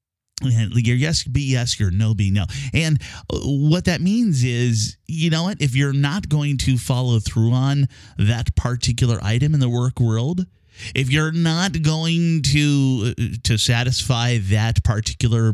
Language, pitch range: English, 100-135 Hz